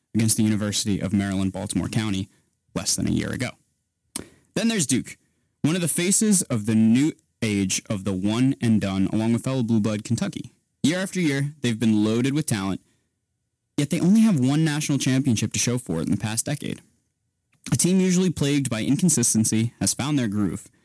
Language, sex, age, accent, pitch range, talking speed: English, male, 20-39, American, 100-145 Hz, 185 wpm